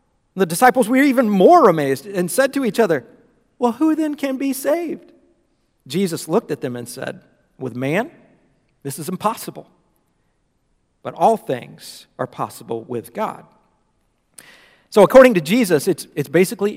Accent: American